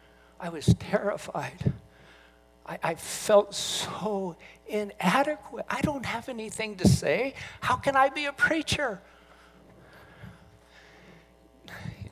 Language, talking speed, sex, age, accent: English, 105 wpm, male, 60-79, American